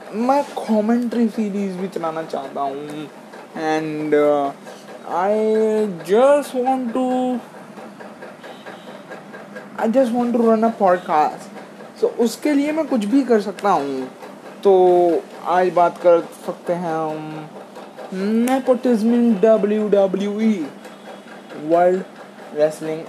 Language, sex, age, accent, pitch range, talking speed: Hindi, male, 20-39, native, 180-235 Hz, 105 wpm